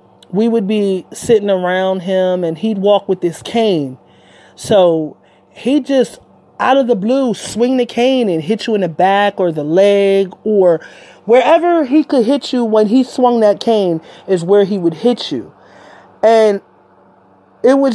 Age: 30-49